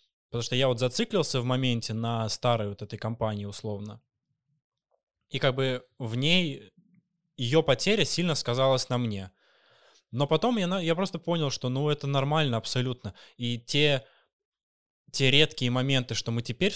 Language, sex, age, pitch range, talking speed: Russian, male, 20-39, 115-155 Hz, 155 wpm